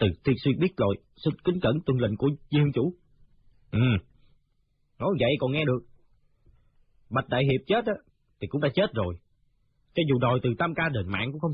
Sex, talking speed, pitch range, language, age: male, 205 wpm, 110-140 Hz, Vietnamese, 30-49